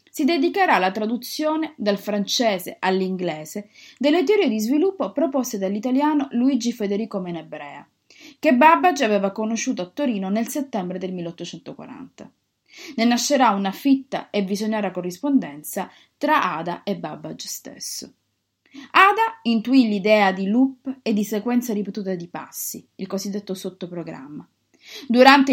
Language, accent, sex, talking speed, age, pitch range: Italian, native, female, 125 wpm, 30-49, 195-280 Hz